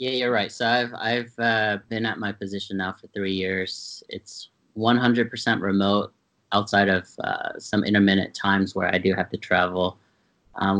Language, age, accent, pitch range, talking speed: English, 30-49, American, 95-110 Hz, 170 wpm